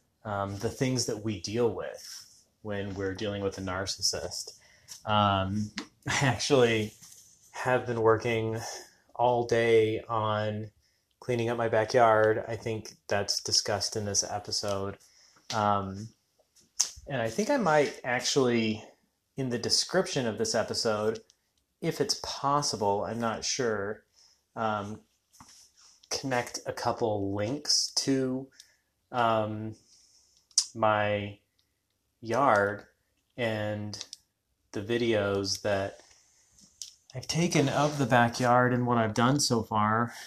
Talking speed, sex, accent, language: 115 wpm, male, American, English